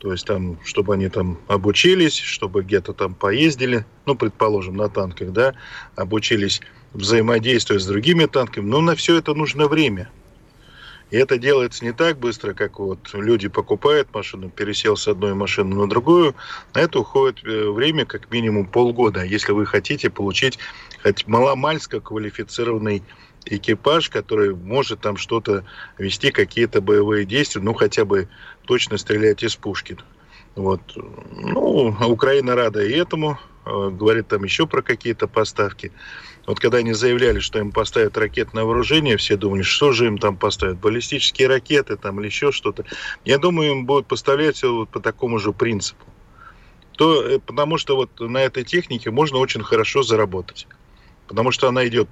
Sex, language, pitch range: male, Russian, 105-145 Hz